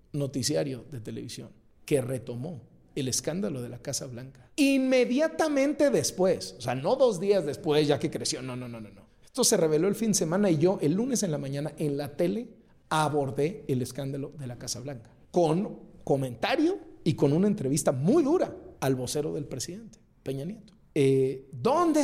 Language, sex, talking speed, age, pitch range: Spanish, male, 180 wpm, 50-69, 145-220 Hz